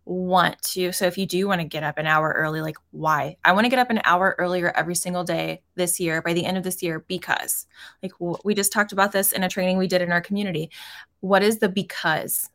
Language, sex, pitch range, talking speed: English, female, 175-215 Hz, 255 wpm